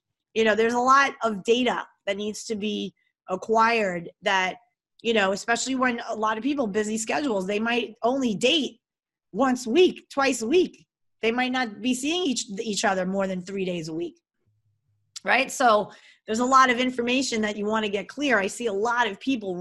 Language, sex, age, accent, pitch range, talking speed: English, female, 30-49, American, 195-240 Hz, 200 wpm